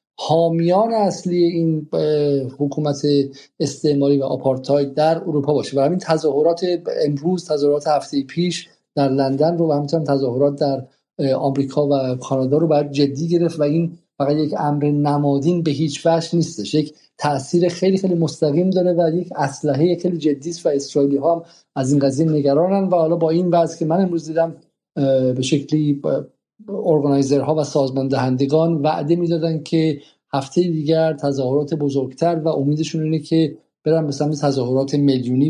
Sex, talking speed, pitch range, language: male, 150 wpm, 140-160 Hz, Persian